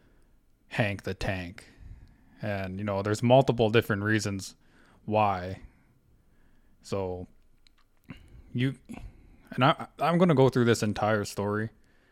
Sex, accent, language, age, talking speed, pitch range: male, American, English, 20-39, 115 wpm, 100-115 Hz